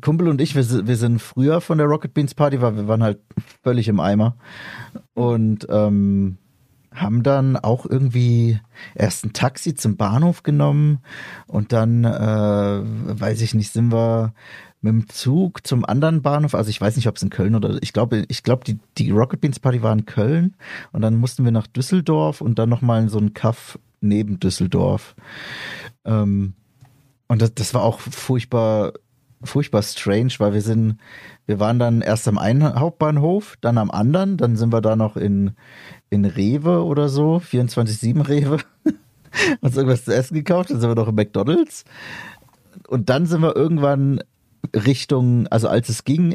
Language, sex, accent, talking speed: German, male, German, 175 wpm